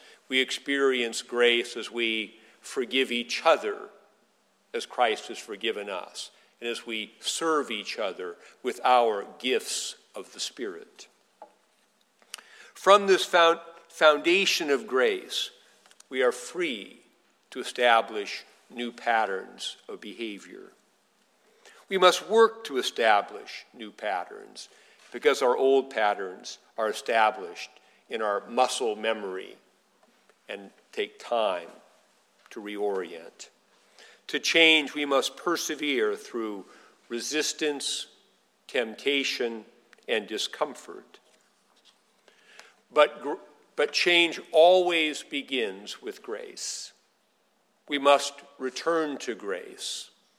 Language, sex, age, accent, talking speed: English, male, 50-69, American, 100 wpm